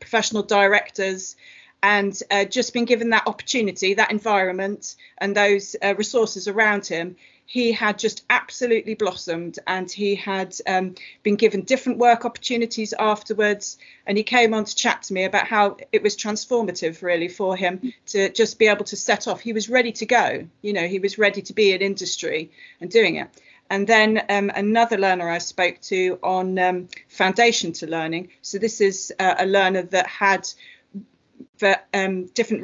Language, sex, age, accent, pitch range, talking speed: English, female, 40-59, British, 190-220 Hz, 175 wpm